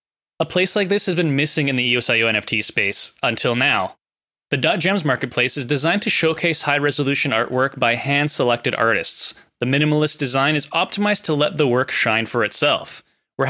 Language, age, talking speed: English, 20-39, 180 wpm